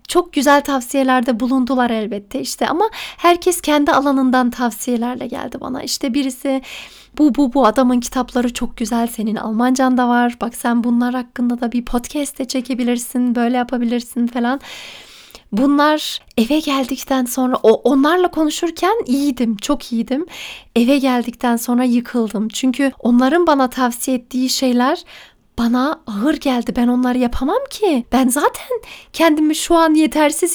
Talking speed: 140 wpm